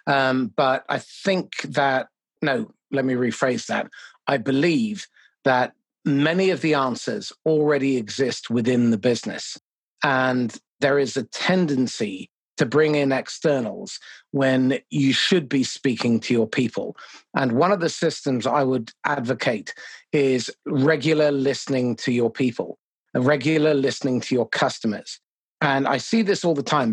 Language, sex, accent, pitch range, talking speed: English, male, British, 130-155 Hz, 145 wpm